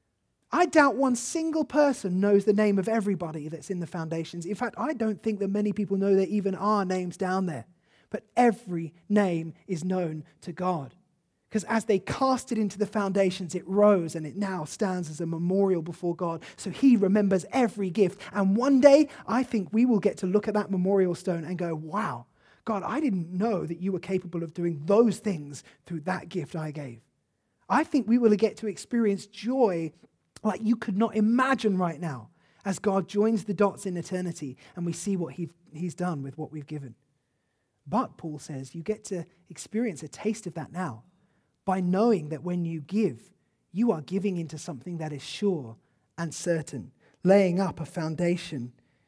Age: 20-39